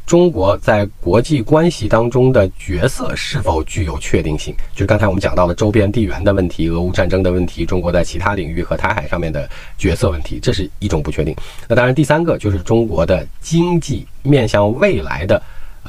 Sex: male